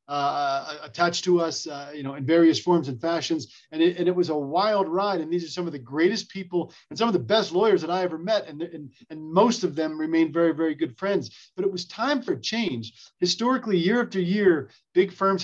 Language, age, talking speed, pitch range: English, 40-59, 235 wpm, 150-190 Hz